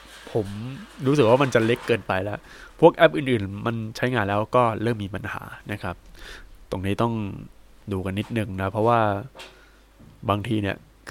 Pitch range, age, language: 100-125 Hz, 20-39, Thai